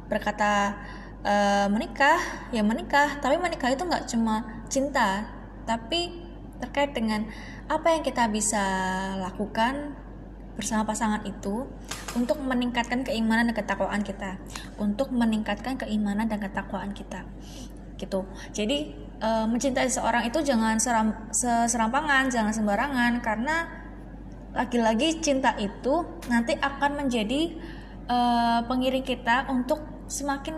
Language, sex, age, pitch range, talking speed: Indonesian, female, 10-29, 205-270 Hz, 110 wpm